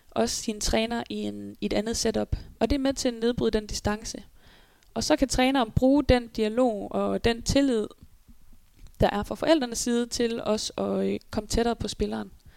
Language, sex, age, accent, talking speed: Danish, female, 20-39, native, 195 wpm